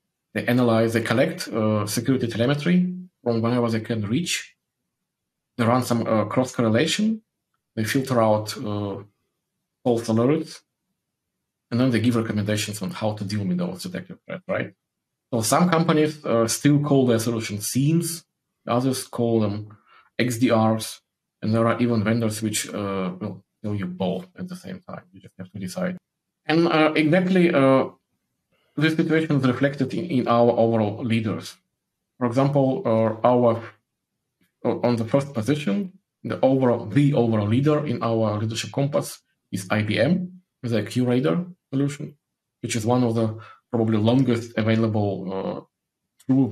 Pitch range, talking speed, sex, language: 110-135 Hz, 150 wpm, male, English